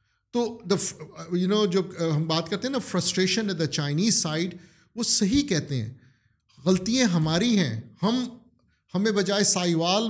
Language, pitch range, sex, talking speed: Urdu, 170-210 Hz, male, 155 wpm